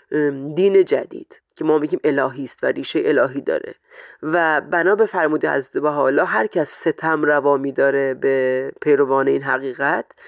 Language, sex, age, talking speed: Persian, female, 30-49, 145 wpm